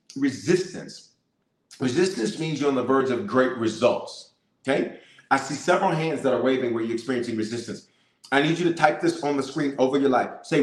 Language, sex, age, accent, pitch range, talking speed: English, male, 40-59, American, 130-170 Hz, 200 wpm